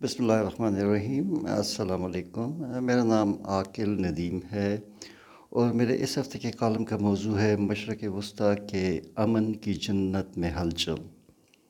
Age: 60-79